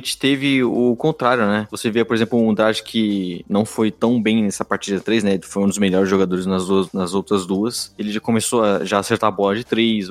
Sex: male